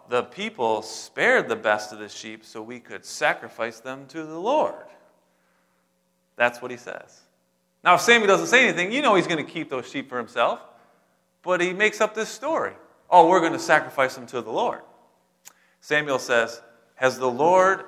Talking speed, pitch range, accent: 190 wpm, 105-140 Hz, American